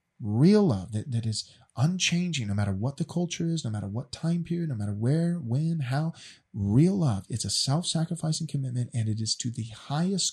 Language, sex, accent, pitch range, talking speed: English, male, American, 125-175 Hz, 200 wpm